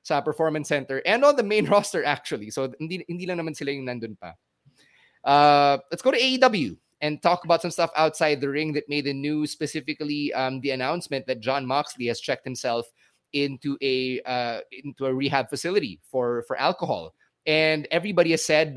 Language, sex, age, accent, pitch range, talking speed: English, male, 20-39, Filipino, 130-155 Hz, 185 wpm